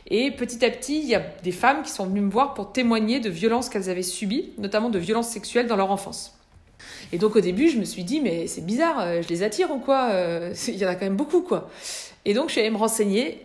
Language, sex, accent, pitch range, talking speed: French, female, French, 185-235 Hz, 265 wpm